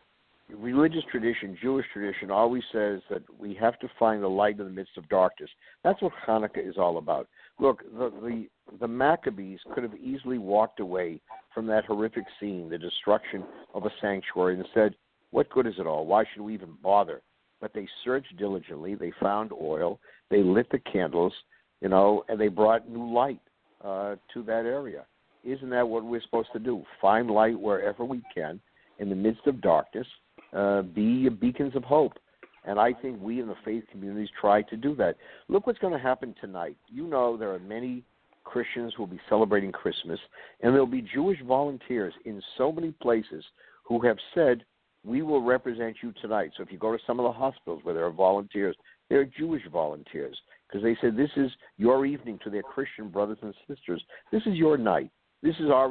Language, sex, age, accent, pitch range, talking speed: English, male, 60-79, American, 100-125 Hz, 195 wpm